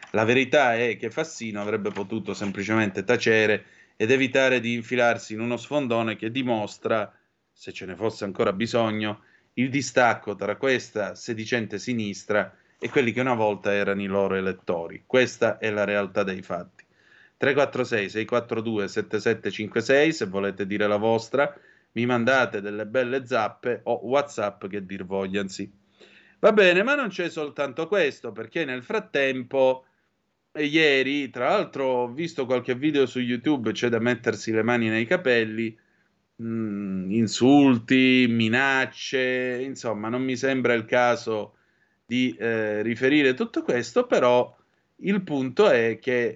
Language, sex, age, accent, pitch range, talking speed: Italian, male, 30-49, native, 110-130 Hz, 140 wpm